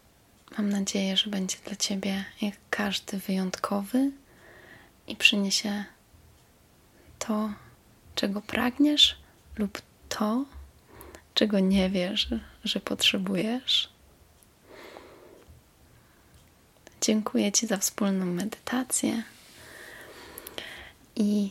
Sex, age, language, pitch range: female, 20-39, Polish, 185-215 Hz